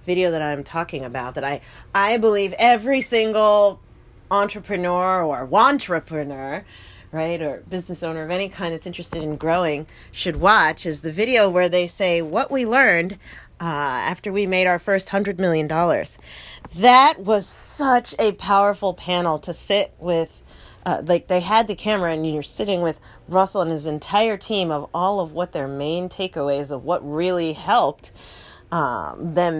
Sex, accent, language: female, American, English